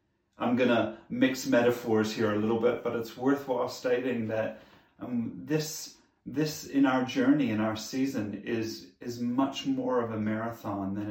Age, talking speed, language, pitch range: 30-49, 165 wpm, English, 110-130 Hz